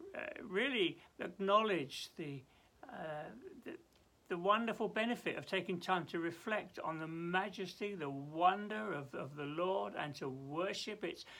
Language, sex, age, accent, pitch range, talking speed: English, male, 60-79, British, 160-200 Hz, 140 wpm